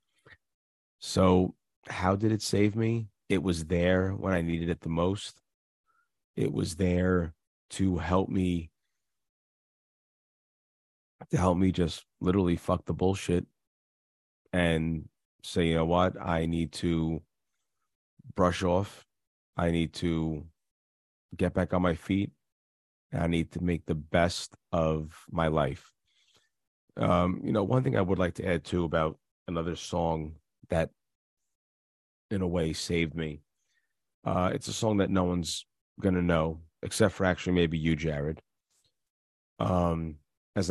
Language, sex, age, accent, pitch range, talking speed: English, male, 30-49, American, 80-90 Hz, 140 wpm